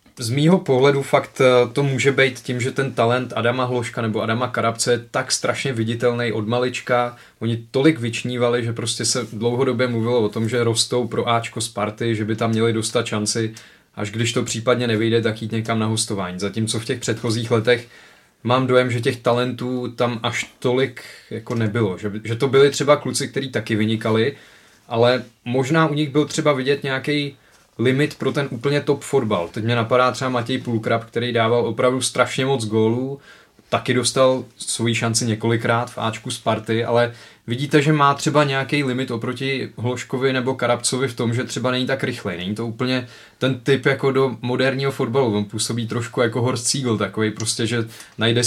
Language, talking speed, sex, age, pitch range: Czech, 185 wpm, male, 20-39, 115-135 Hz